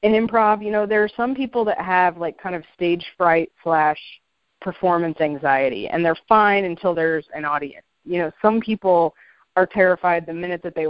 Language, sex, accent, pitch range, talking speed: English, female, American, 160-205 Hz, 195 wpm